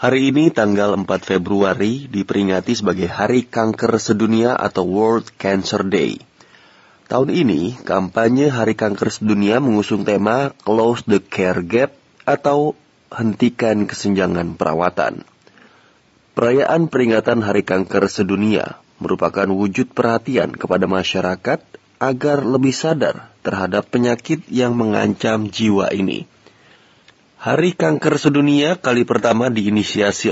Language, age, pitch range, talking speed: Indonesian, 30-49, 100-125 Hz, 110 wpm